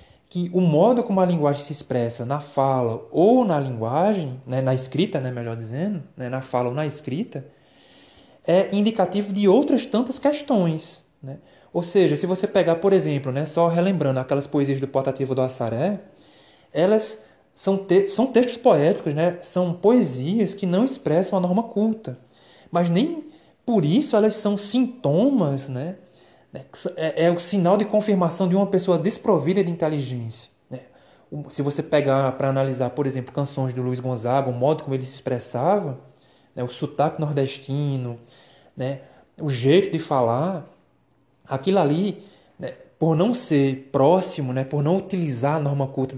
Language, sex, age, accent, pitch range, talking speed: Portuguese, male, 20-39, Brazilian, 135-190 Hz, 160 wpm